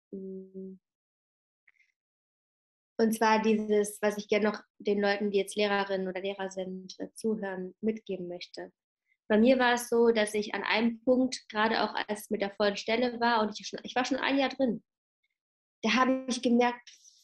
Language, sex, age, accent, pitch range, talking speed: German, female, 20-39, German, 205-265 Hz, 165 wpm